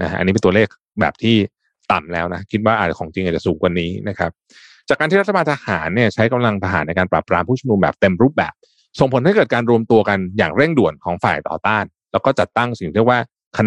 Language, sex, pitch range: Thai, male, 95-130 Hz